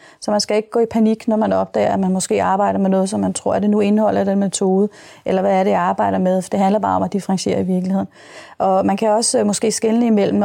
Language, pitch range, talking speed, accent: English, 185-210 Hz, 270 wpm, Danish